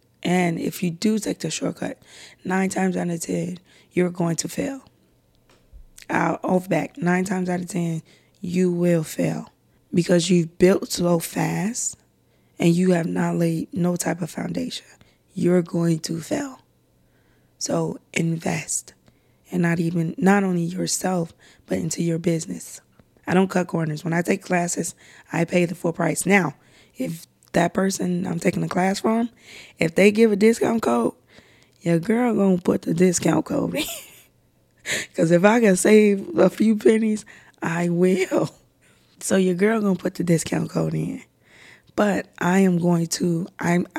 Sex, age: female, 20-39